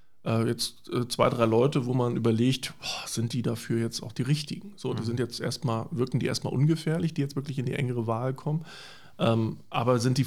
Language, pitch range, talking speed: German, 120-145 Hz, 210 wpm